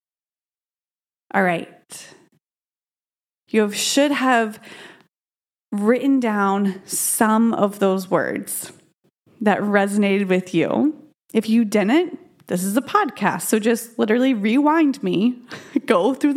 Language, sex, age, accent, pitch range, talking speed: English, female, 20-39, American, 200-250 Hz, 105 wpm